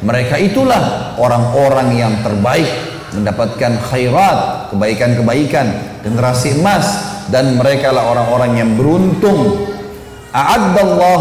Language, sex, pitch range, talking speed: Indonesian, male, 115-150 Hz, 80 wpm